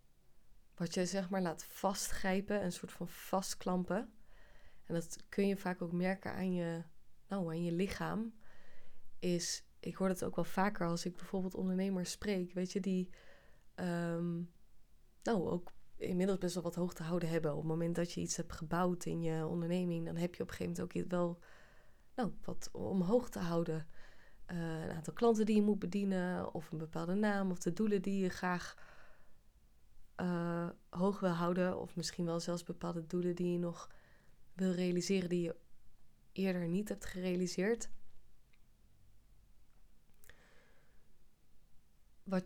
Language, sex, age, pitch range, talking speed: Dutch, female, 20-39, 170-190 Hz, 160 wpm